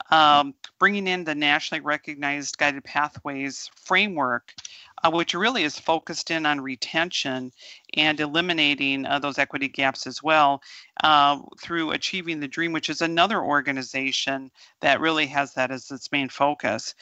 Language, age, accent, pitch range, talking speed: English, 50-69, American, 140-170 Hz, 150 wpm